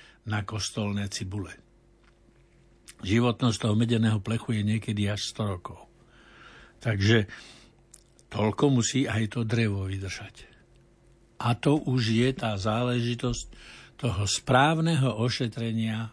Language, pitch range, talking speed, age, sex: Slovak, 105-125 Hz, 105 wpm, 60-79, male